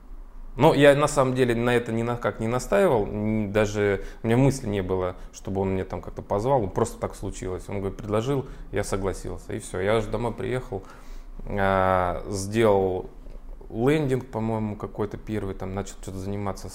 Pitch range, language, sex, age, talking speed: 95-120 Hz, Russian, male, 20-39, 165 wpm